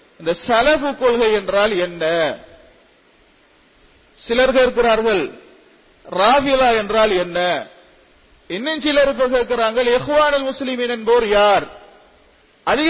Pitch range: 205-270 Hz